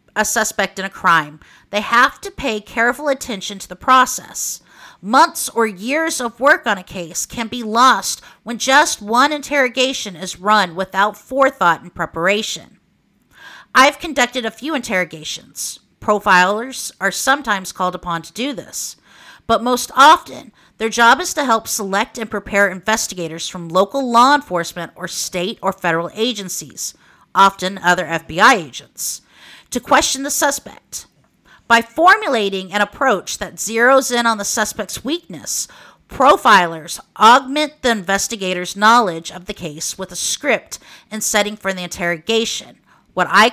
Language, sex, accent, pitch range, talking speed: English, female, American, 185-245 Hz, 145 wpm